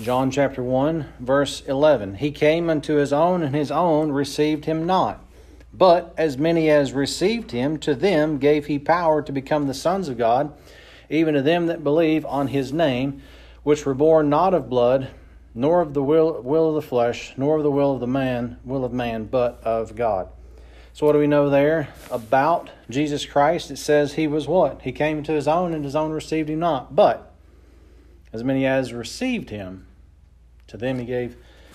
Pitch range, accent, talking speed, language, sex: 100-150 Hz, American, 195 wpm, English, male